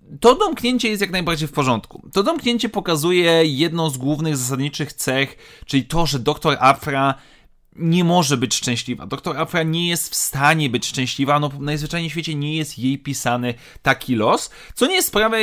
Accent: native